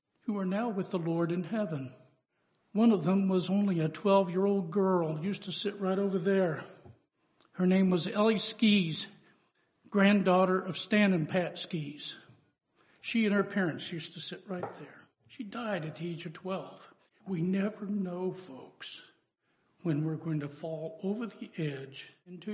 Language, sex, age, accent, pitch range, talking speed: English, male, 60-79, American, 160-200 Hz, 170 wpm